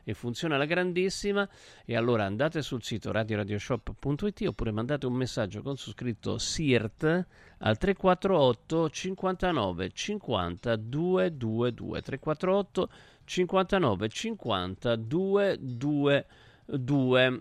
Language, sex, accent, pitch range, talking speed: Italian, male, native, 110-145 Hz, 95 wpm